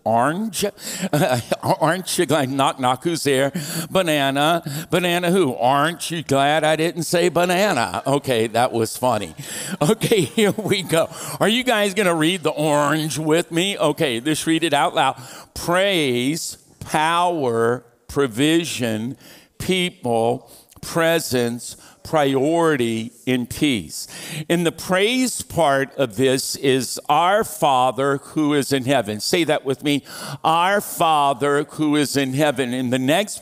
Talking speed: 140 wpm